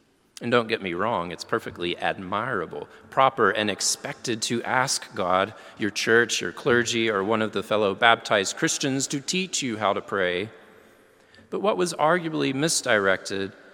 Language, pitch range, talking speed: English, 100-135 Hz, 155 wpm